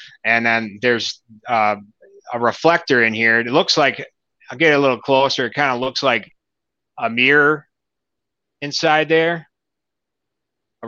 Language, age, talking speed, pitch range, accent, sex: English, 30-49, 145 wpm, 115-135 Hz, American, male